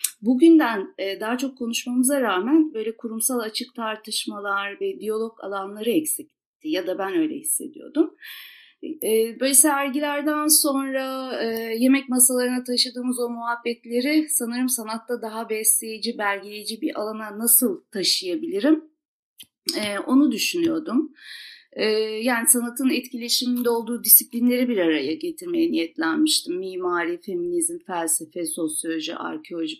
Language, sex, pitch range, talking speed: Turkish, female, 225-310 Hz, 105 wpm